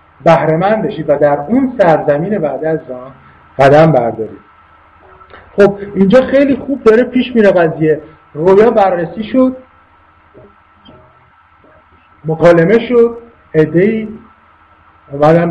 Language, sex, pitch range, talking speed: English, male, 125-190 Hz, 105 wpm